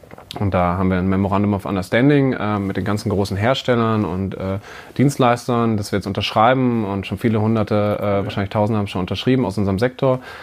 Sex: male